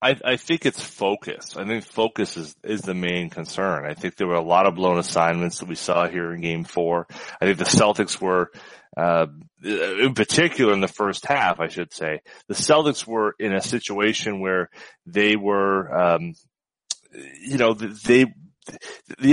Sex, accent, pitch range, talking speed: male, American, 95-135 Hz, 180 wpm